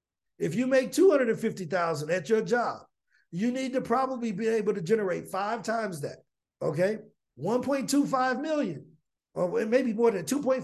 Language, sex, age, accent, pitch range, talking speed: English, male, 50-69, American, 215-280 Hz, 190 wpm